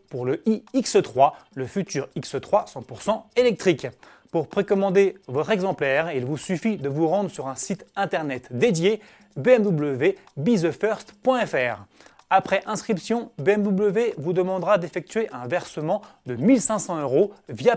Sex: male